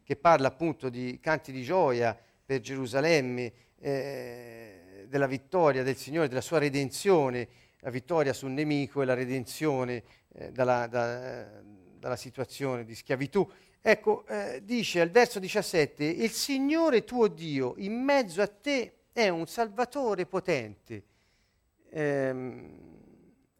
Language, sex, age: Italian, male, 40-59